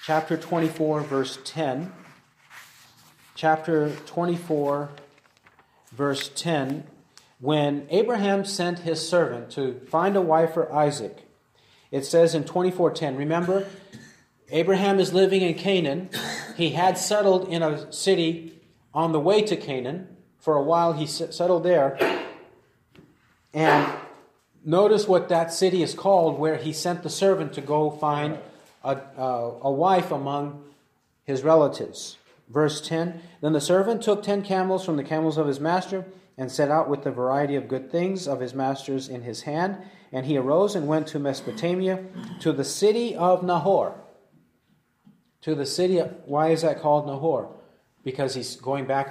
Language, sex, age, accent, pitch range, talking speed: English, male, 40-59, American, 140-180 Hz, 150 wpm